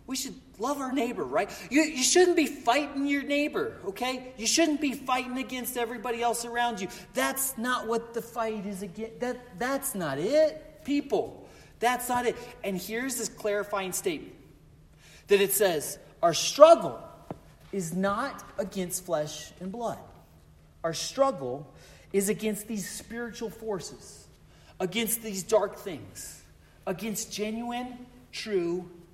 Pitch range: 210-295 Hz